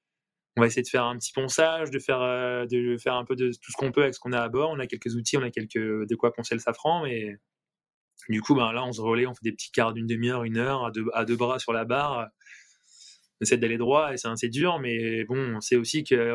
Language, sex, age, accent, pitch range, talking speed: French, male, 20-39, French, 115-135 Hz, 280 wpm